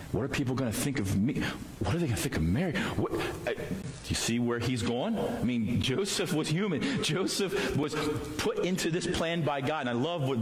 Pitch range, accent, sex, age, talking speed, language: 85-125 Hz, American, male, 40-59, 225 wpm, English